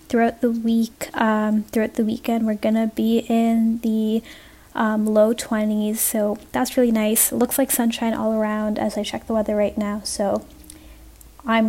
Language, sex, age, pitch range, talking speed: English, female, 10-29, 220-260 Hz, 180 wpm